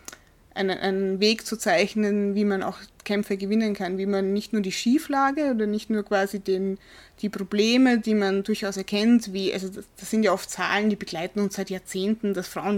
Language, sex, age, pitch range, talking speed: German, female, 20-39, 195-215 Hz, 200 wpm